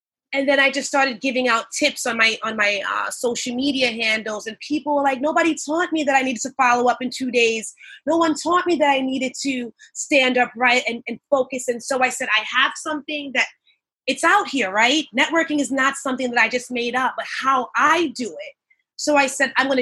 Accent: American